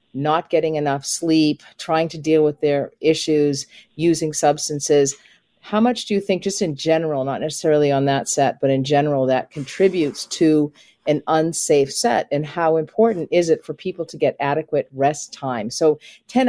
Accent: American